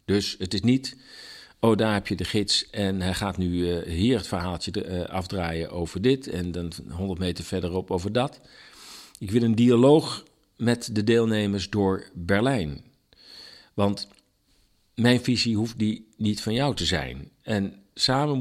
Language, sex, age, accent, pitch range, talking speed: Dutch, male, 50-69, Dutch, 95-120 Hz, 165 wpm